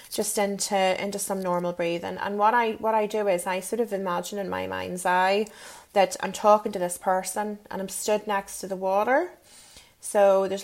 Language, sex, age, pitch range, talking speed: English, female, 30-49, 190-220 Hz, 205 wpm